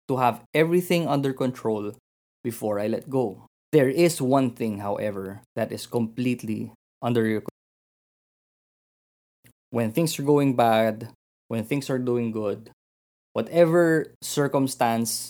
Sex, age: male, 20-39